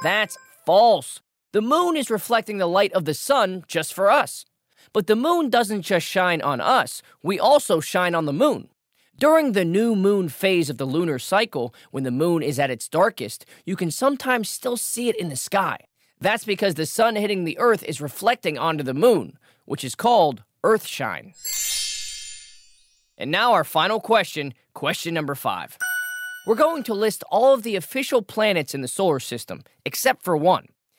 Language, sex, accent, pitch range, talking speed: English, male, American, 140-235 Hz, 180 wpm